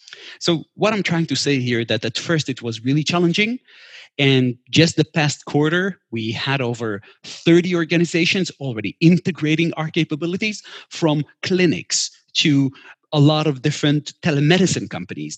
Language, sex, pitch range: English, male, 125-165 Hz